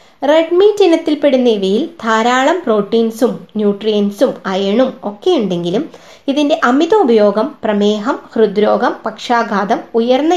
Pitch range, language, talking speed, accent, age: 215-295 Hz, Malayalam, 85 wpm, native, 20-39